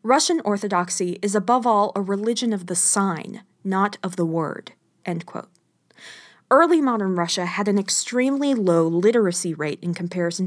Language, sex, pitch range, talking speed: English, female, 175-220 Hz, 155 wpm